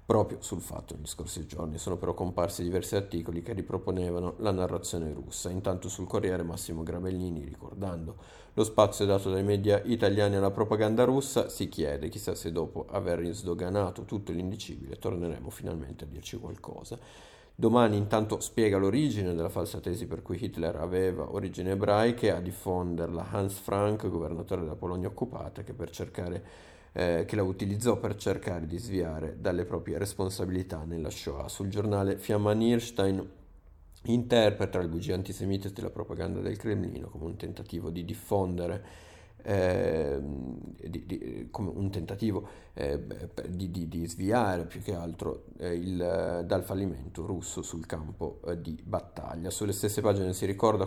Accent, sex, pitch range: native, male, 85-105 Hz